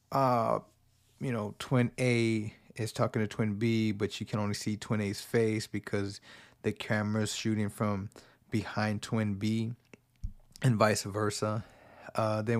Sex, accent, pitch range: male, American, 105-120 Hz